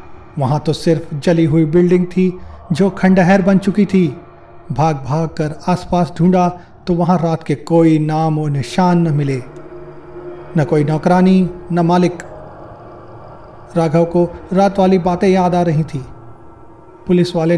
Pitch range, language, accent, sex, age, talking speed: 145-180 Hz, Hindi, native, male, 40-59, 145 wpm